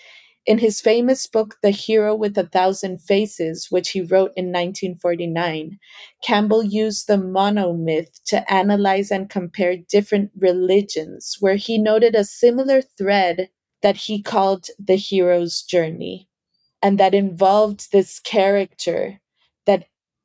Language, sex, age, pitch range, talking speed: English, female, 30-49, 175-205 Hz, 125 wpm